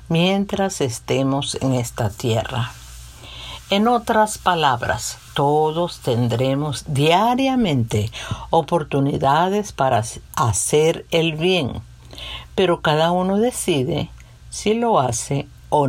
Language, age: Spanish, 50-69